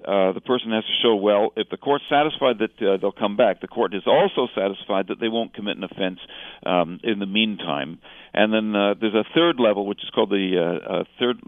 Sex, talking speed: male, 235 wpm